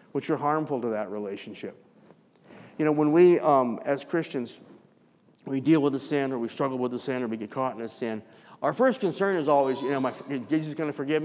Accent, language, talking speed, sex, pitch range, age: American, English, 240 wpm, male, 130-160 Hz, 50-69